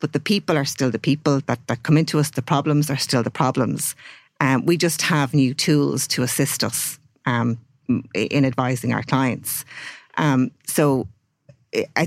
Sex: female